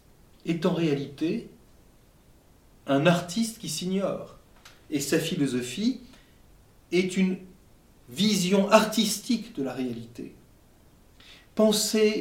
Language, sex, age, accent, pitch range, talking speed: French, male, 40-59, French, 140-200 Hz, 90 wpm